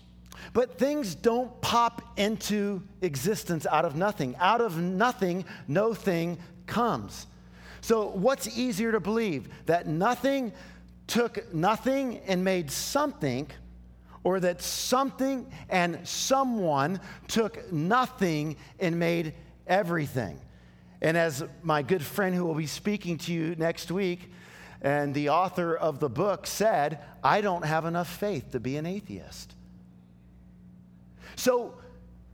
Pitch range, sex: 145-220 Hz, male